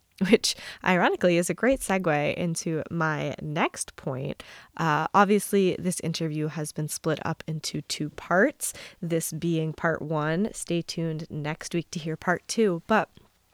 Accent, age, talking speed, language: American, 20-39, 150 wpm, English